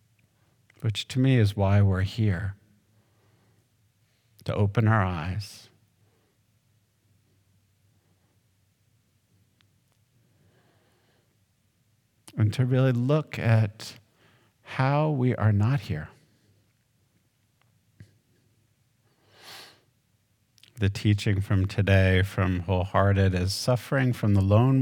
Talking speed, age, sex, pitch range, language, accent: 75 wpm, 50-69, male, 100-120 Hz, English, American